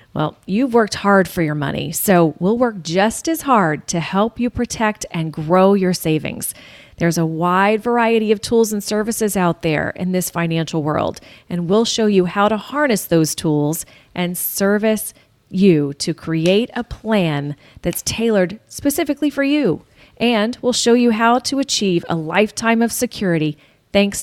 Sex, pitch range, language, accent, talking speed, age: female, 170-225 Hz, English, American, 170 wpm, 30-49